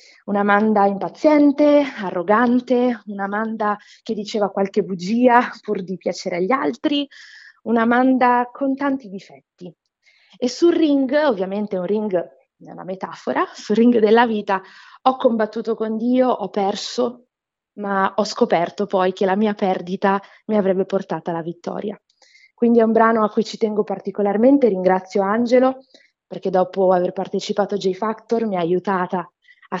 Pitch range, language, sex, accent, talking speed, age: 195-255 Hz, Italian, female, native, 145 wpm, 20-39